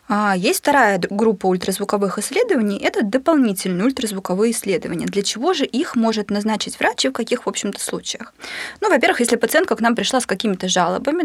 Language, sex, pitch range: Russian, female, 195-255 Hz